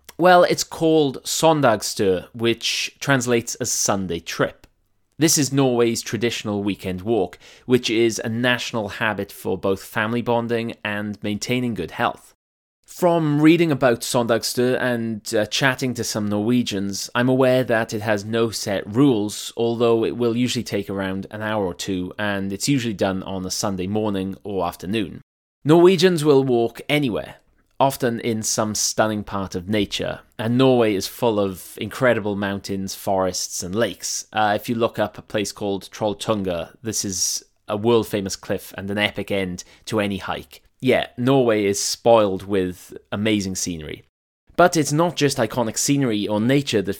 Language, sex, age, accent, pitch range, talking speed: English, male, 20-39, British, 100-125 Hz, 160 wpm